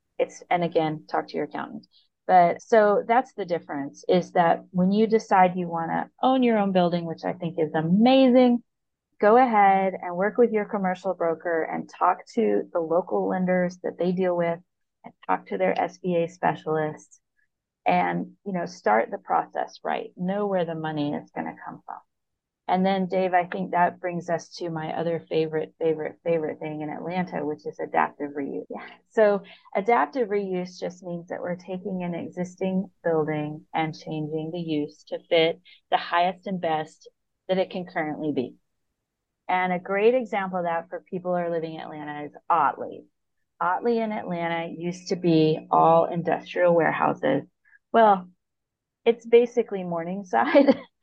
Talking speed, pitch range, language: 170 wpm, 160-195 Hz, English